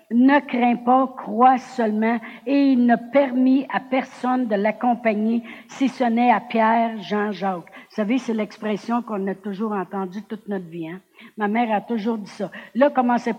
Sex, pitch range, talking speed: female, 215-250 Hz, 180 wpm